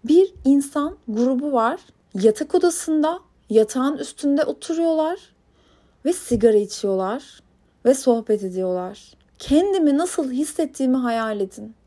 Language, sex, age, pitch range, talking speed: Turkish, female, 30-49, 220-310 Hz, 100 wpm